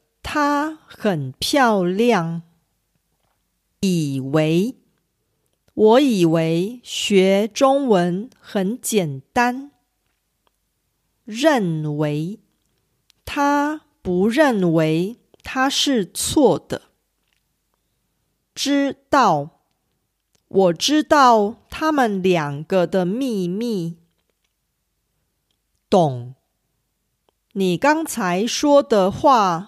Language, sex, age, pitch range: Korean, female, 50-69, 165-255 Hz